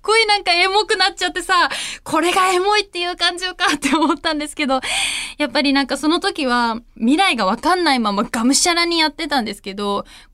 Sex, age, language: female, 20-39, Japanese